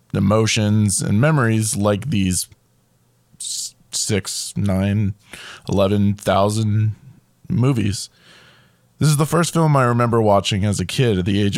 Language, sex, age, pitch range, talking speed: English, male, 20-39, 100-125 Hz, 125 wpm